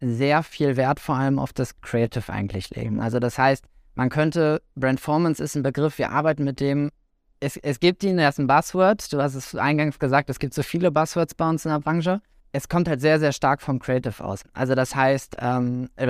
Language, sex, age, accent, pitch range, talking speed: German, male, 20-39, German, 130-155 Hz, 215 wpm